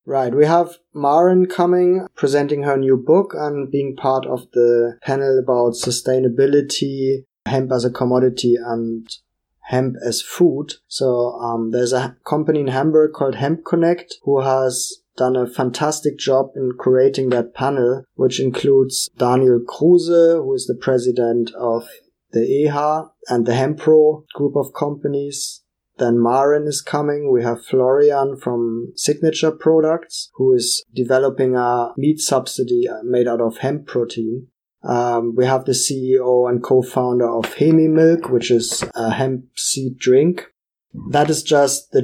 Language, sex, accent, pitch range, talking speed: English, male, German, 125-150 Hz, 150 wpm